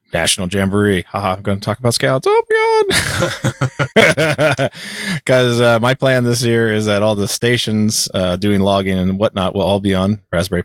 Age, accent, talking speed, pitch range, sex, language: 30-49, American, 180 wpm, 90-110 Hz, male, English